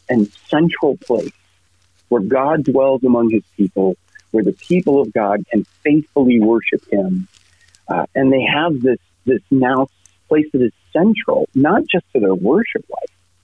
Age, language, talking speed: 40-59, English, 155 wpm